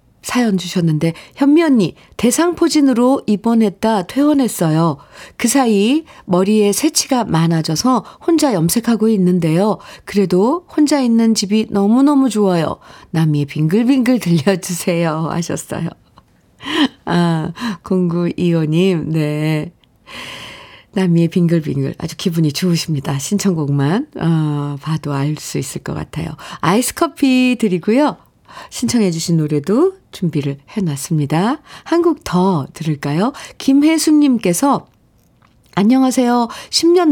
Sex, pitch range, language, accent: female, 165-245 Hz, Korean, native